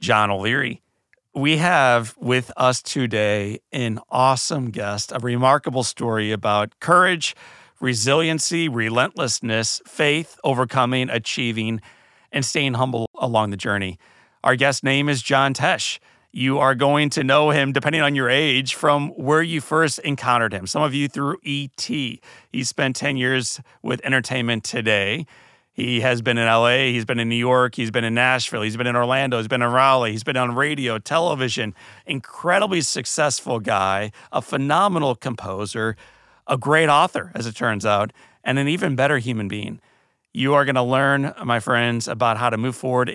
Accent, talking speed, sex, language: American, 165 wpm, male, English